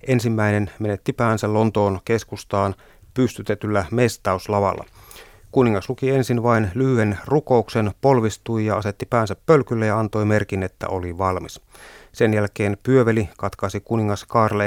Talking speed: 125 wpm